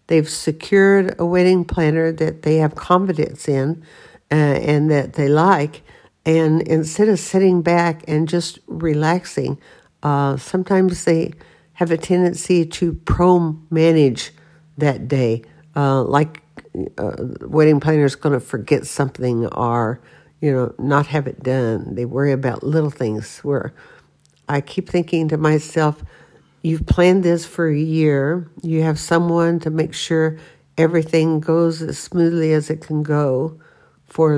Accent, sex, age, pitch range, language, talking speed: American, female, 60-79, 145-165 Hz, English, 140 wpm